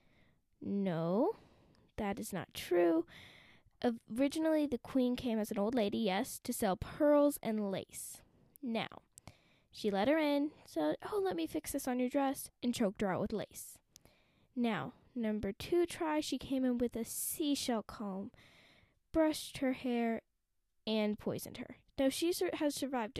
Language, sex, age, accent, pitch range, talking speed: English, female, 10-29, American, 220-285 Hz, 155 wpm